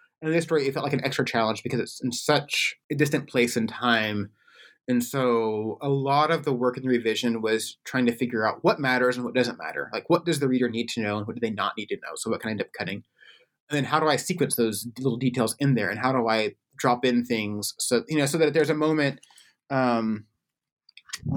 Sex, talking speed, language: male, 260 wpm, English